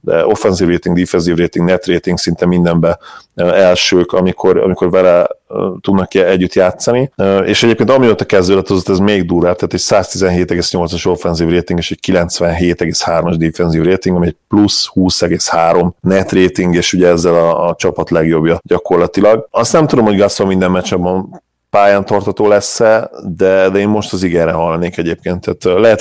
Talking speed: 165 wpm